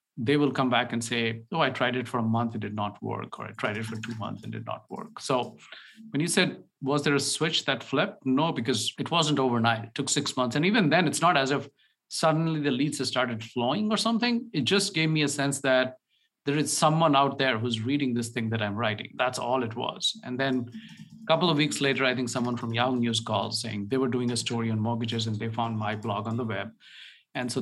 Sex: male